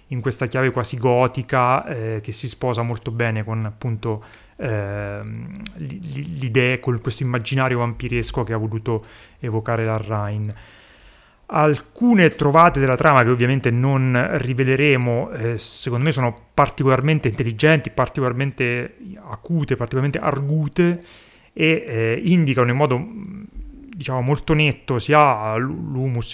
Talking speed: 120 wpm